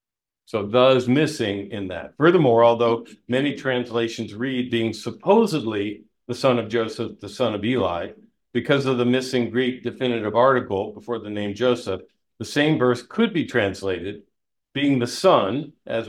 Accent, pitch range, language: American, 110-130 Hz, English